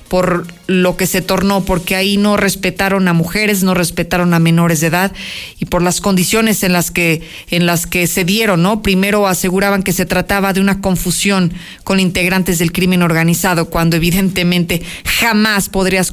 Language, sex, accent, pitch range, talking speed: Spanish, female, Mexican, 180-210 Hz, 165 wpm